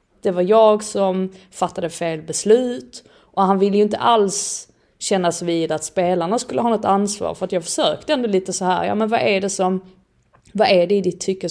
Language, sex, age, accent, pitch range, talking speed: Swedish, female, 20-39, native, 175-225 Hz, 215 wpm